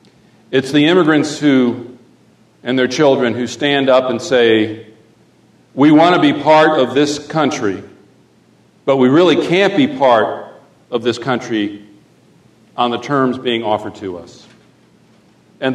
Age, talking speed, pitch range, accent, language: 50-69, 140 wpm, 105-130 Hz, American, English